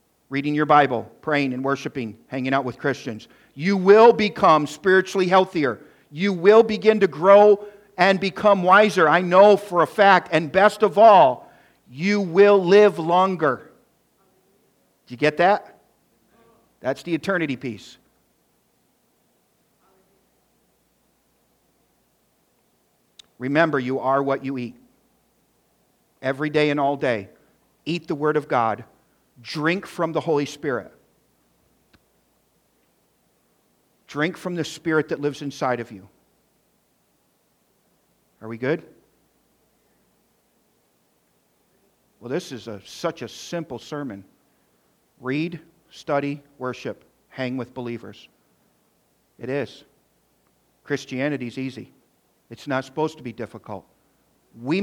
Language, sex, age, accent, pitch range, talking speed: English, male, 50-69, American, 130-185 Hz, 110 wpm